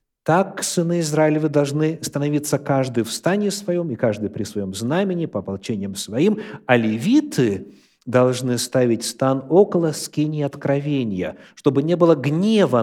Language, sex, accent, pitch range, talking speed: Russian, male, native, 130-195 Hz, 135 wpm